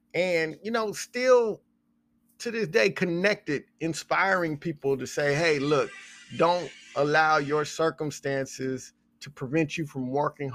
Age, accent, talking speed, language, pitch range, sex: 30-49, American, 130 wpm, English, 145-220 Hz, male